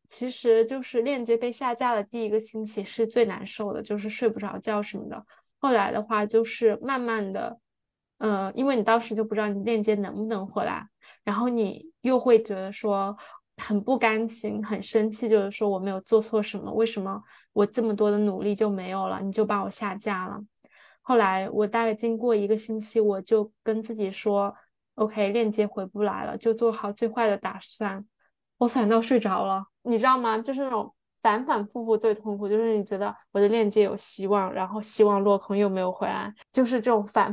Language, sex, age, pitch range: Chinese, female, 10-29, 205-225 Hz